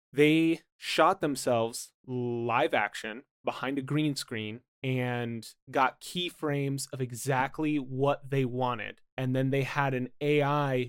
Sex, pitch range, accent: male, 125-145 Hz, American